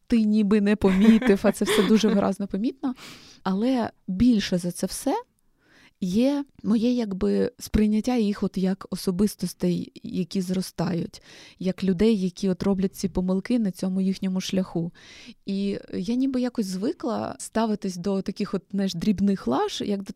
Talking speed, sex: 145 wpm, female